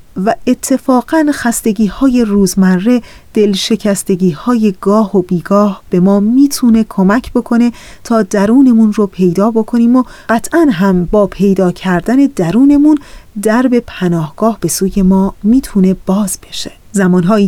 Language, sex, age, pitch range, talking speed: Persian, female, 30-49, 195-245 Hz, 125 wpm